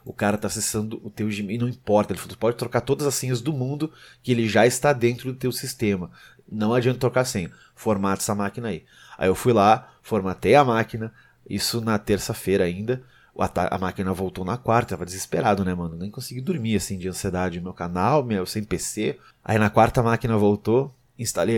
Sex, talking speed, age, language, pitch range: male, 205 wpm, 30-49, Portuguese, 100-120 Hz